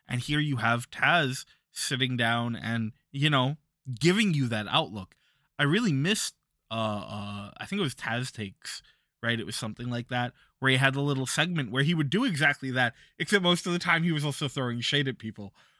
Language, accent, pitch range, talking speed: English, American, 110-145 Hz, 210 wpm